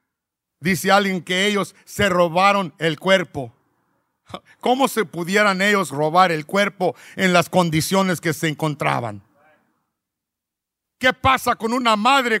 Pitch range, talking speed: 160-240 Hz, 125 wpm